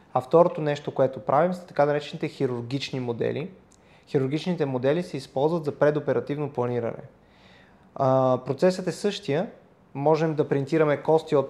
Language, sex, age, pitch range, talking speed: Bulgarian, male, 20-39, 130-165 Hz, 140 wpm